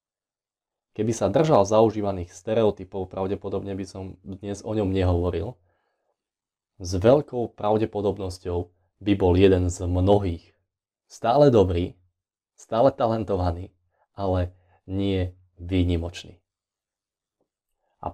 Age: 20-39